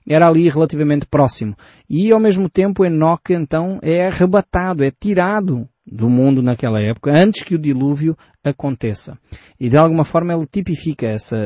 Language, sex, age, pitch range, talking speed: Portuguese, male, 20-39, 115-170 Hz, 155 wpm